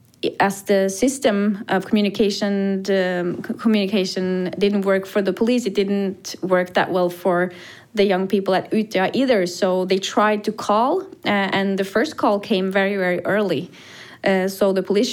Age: 20-39